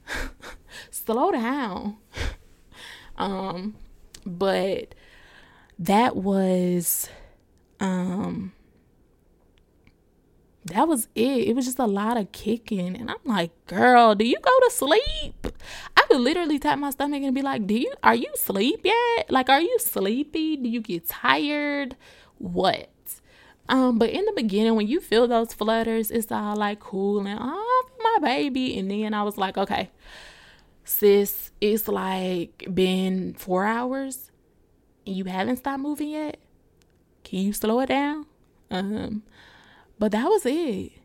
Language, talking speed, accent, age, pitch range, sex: English, 140 wpm, American, 20-39, 190-255 Hz, female